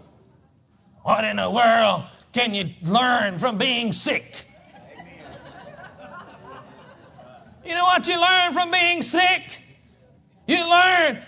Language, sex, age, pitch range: English, male, 40-59, 235-350 Hz